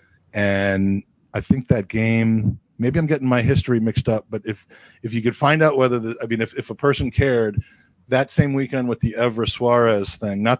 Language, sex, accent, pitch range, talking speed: English, male, American, 100-120 Hz, 210 wpm